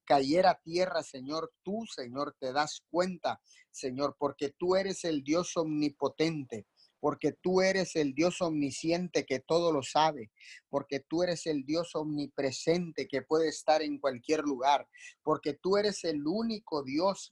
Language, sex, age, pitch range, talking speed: Spanish, male, 30-49, 145-180 Hz, 150 wpm